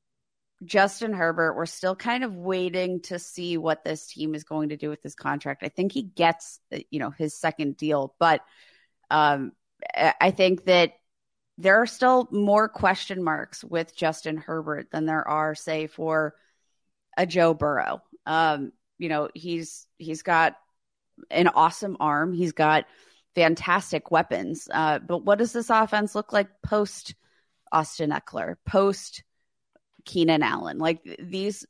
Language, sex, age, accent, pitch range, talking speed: English, female, 30-49, American, 160-195 Hz, 150 wpm